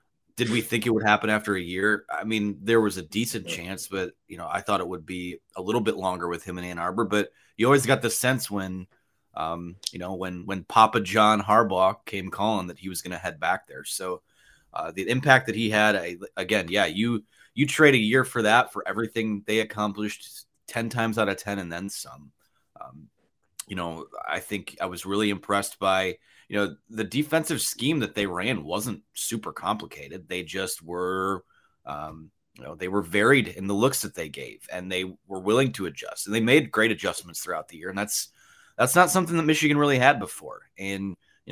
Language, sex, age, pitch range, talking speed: English, male, 30-49, 95-115 Hz, 215 wpm